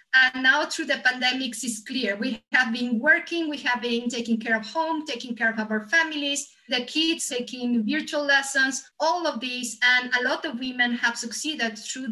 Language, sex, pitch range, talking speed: English, female, 230-275 Hz, 195 wpm